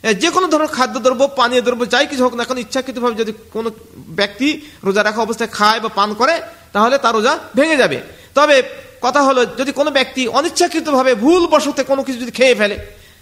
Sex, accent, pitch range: male, native, 225-275 Hz